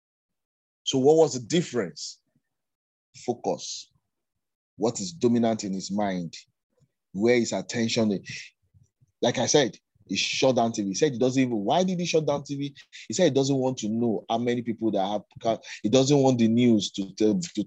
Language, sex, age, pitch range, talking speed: English, male, 30-49, 105-135 Hz, 175 wpm